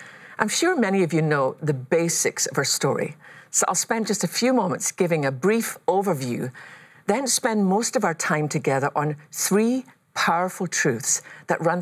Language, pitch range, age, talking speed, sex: English, 150-190 Hz, 50-69, 180 wpm, female